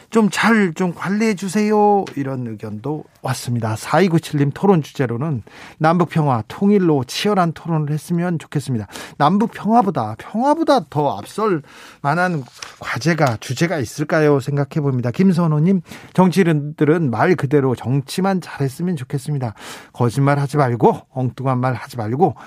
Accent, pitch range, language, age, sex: native, 135-180 Hz, Korean, 40-59, male